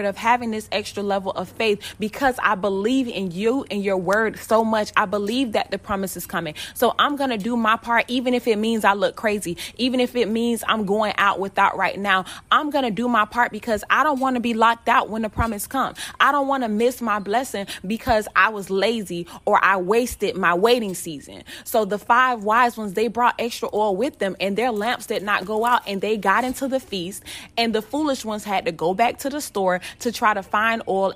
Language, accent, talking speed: English, American, 235 wpm